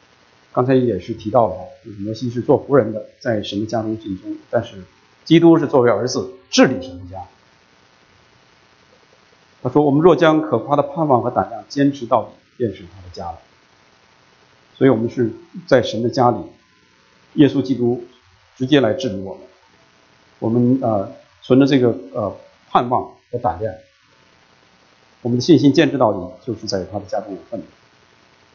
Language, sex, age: English, male, 50-69